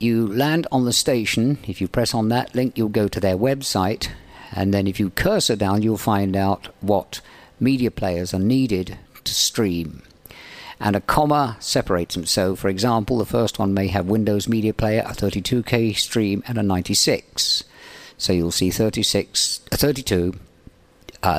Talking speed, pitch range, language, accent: 170 wpm, 95-120 Hz, English, British